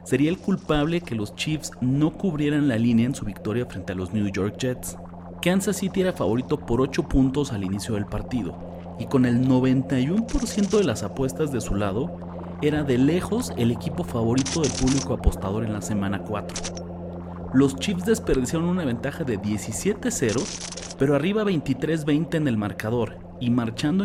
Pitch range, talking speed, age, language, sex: 100-145 Hz, 170 wpm, 40-59, Spanish, male